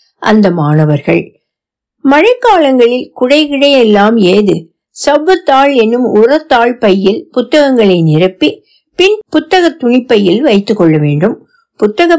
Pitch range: 195-275 Hz